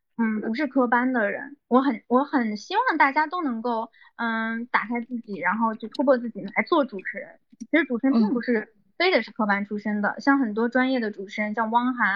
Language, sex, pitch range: Chinese, female, 220-270 Hz